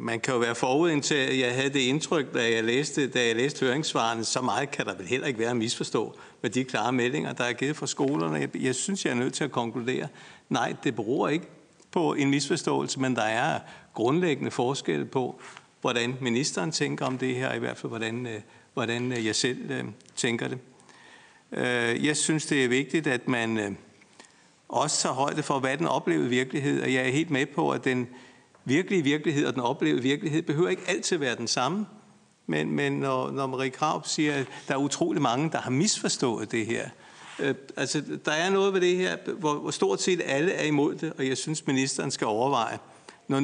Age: 50-69